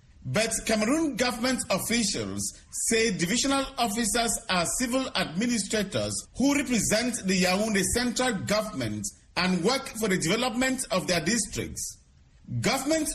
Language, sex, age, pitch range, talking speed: English, male, 50-69, 175-240 Hz, 115 wpm